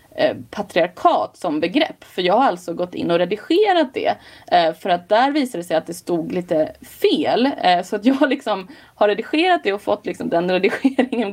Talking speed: 200 wpm